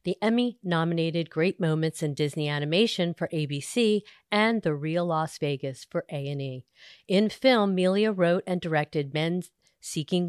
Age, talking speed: 40-59, 145 wpm